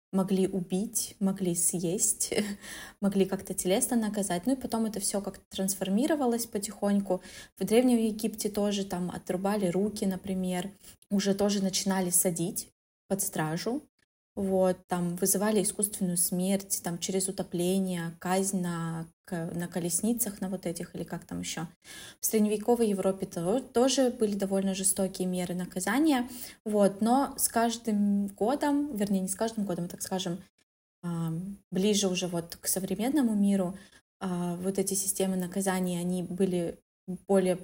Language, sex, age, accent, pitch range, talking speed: Russian, female, 20-39, native, 180-210 Hz, 130 wpm